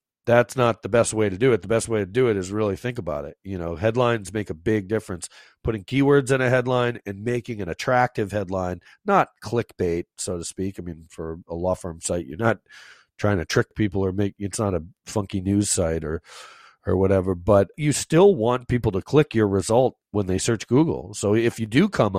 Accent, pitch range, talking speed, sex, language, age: American, 95-115 Hz, 225 wpm, male, English, 40-59